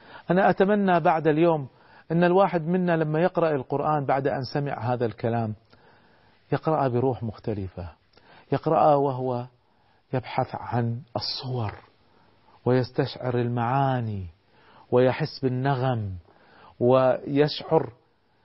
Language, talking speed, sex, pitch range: Arabic, 90 wpm, male, 105-145 Hz